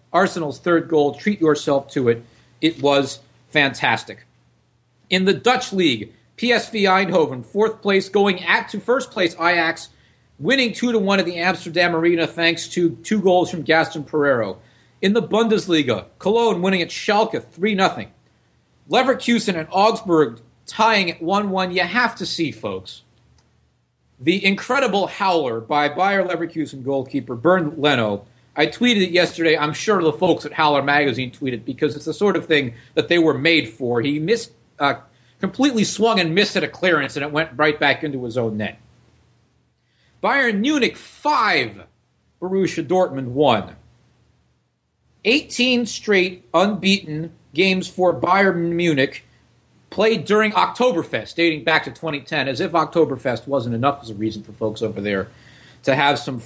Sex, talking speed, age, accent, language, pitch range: male, 150 wpm, 40-59, American, English, 140-195 Hz